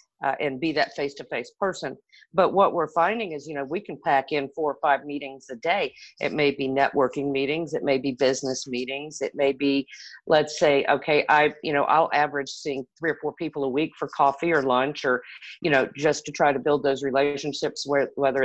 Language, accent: English, American